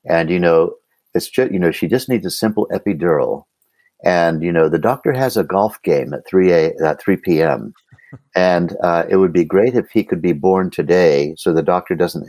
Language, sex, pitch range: English, male, 80-95 Hz